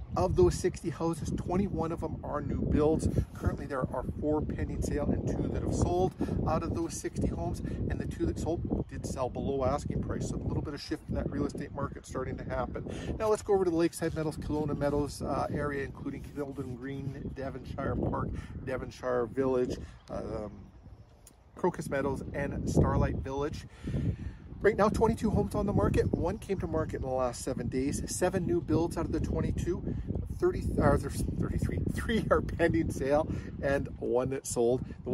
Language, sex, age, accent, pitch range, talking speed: English, male, 40-59, American, 120-155 Hz, 190 wpm